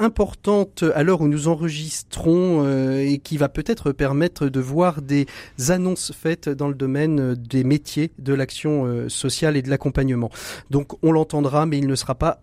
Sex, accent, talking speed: male, French, 170 wpm